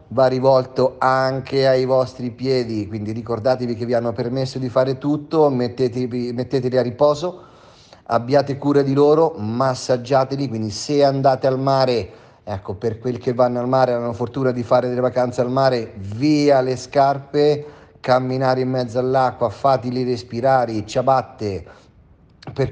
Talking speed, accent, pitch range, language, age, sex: 145 wpm, native, 120-135 Hz, Italian, 30-49, male